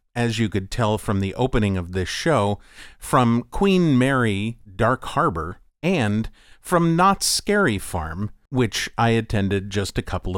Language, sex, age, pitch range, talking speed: English, male, 50-69, 100-135 Hz, 150 wpm